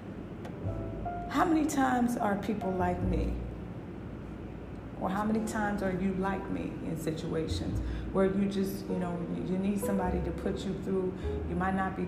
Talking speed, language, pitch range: 165 wpm, English, 175-205 Hz